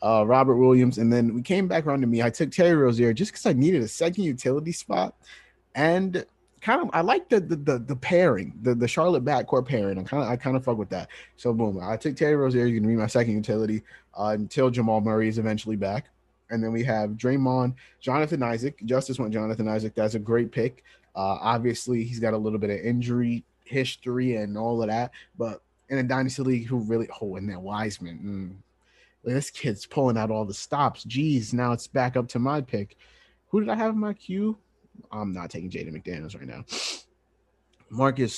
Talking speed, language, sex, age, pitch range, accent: 215 wpm, English, male, 20-39, 110-145 Hz, American